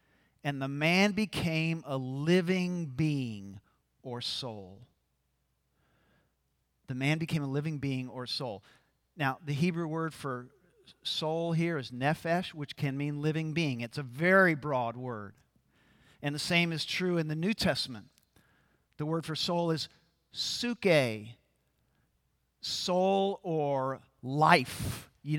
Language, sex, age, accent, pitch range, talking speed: English, male, 50-69, American, 130-170 Hz, 130 wpm